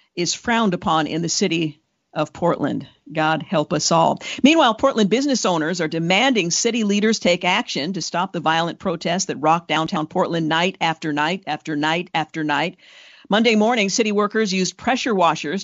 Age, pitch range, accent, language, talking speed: 50-69, 160-200 Hz, American, English, 175 wpm